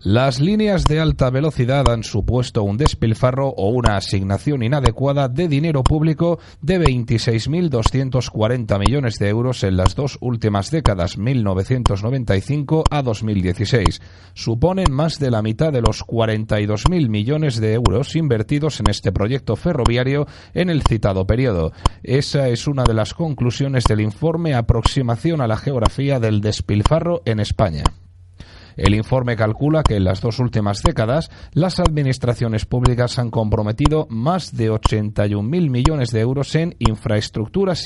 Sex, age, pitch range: male, 30-49, 105-140 Hz